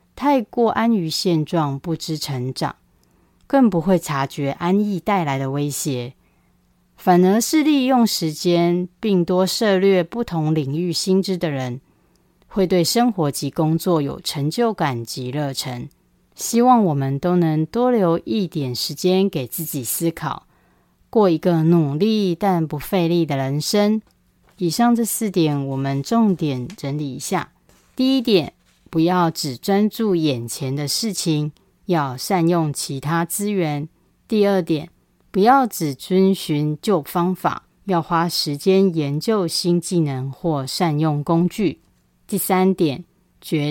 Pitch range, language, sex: 150-200 Hz, Chinese, female